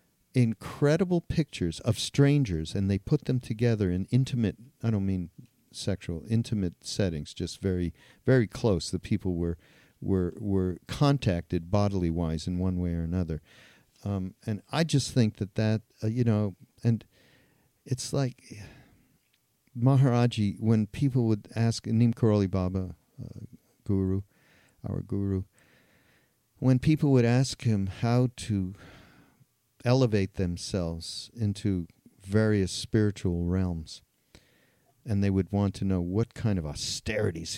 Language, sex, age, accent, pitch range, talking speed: English, male, 50-69, American, 90-115 Hz, 130 wpm